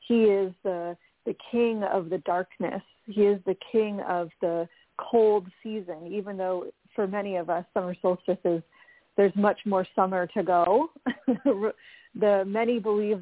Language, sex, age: English, female, 40-59